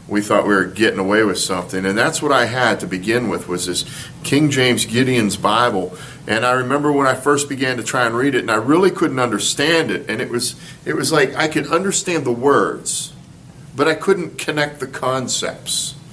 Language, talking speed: English, 210 wpm